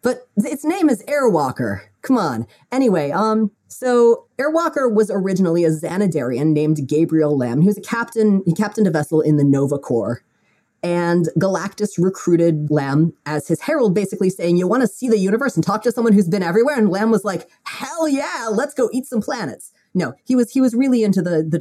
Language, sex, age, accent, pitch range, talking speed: English, female, 30-49, American, 155-220 Hz, 200 wpm